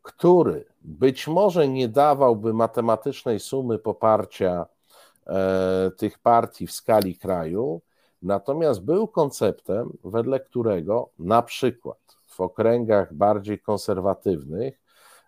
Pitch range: 95-130 Hz